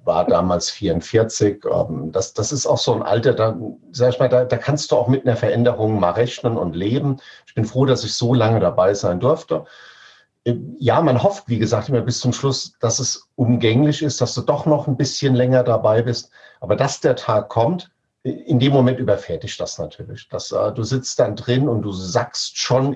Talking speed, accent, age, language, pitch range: 195 wpm, German, 50-69, German, 110-130 Hz